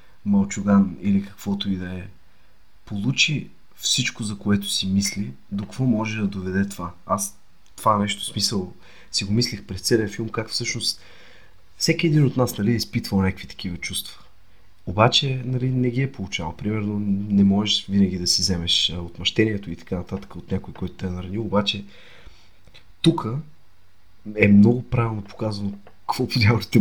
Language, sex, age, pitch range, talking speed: Bulgarian, male, 30-49, 95-115 Hz, 160 wpm